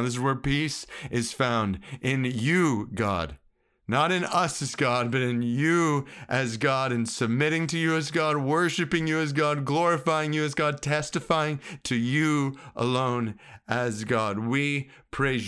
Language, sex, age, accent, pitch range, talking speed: English, male, 40-59, American, 120-155 Hz, 160 wpm